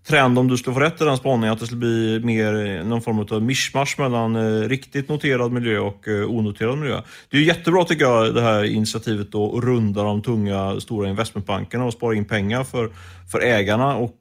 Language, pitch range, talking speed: Swedish, 105-130 Hz, 205 wpm